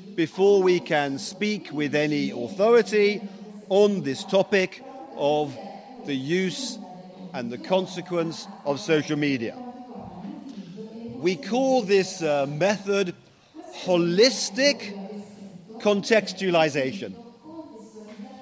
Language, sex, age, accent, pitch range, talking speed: Italian, male, 40-59, British, 175-210 Hz, 85 wpm